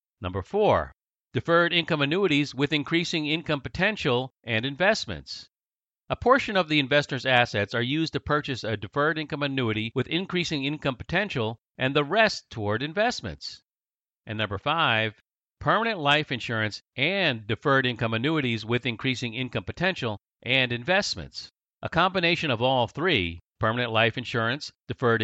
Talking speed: 140 wpm